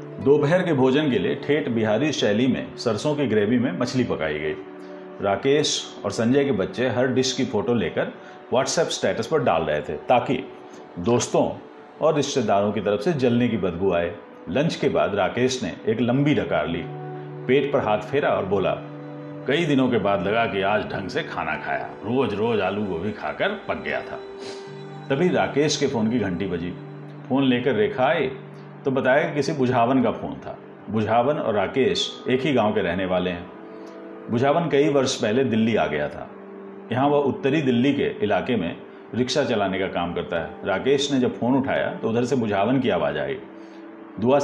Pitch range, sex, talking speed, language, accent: 105-150 Hz, male, 190 wpm, Hindi, native